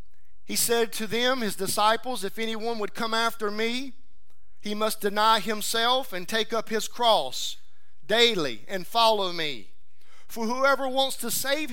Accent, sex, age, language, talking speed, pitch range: American, male, 50-69, English, 155 wpm, 175-245 Hz